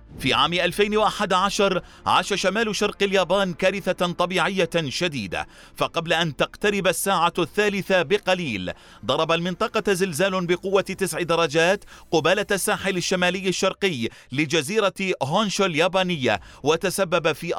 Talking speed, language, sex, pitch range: 105 wpm, Arabic, male, 170-200 Hz